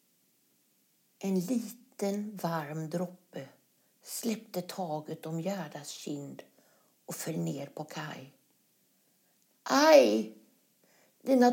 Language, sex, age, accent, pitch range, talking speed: Swedish, female, 60-79, native, 180-245 Hz, 85 wpm